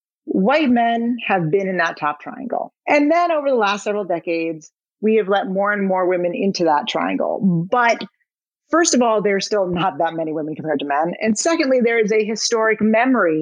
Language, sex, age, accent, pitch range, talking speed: English, female, 30-49, American, 185-250 Hz, 200 wpm